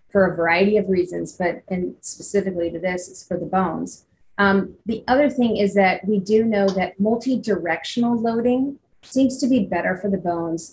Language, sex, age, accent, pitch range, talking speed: English, female, 30-49, American, 185-225 Hz, 185 wpm